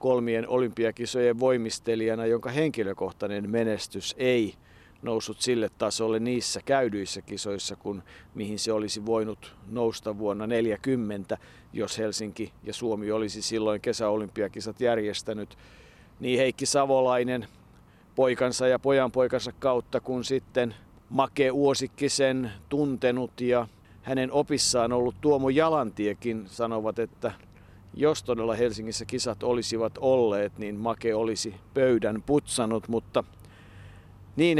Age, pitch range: 50-69, 105-130 Hz